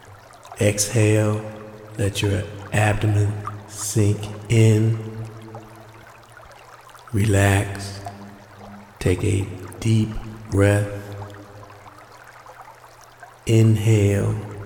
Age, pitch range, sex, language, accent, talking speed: 50-69, 100-105 Hz, male, English, American, 50 wpm